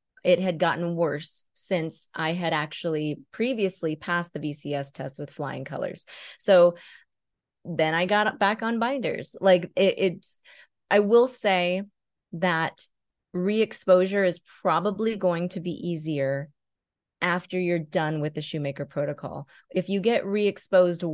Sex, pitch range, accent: female, 155-195 Hz, American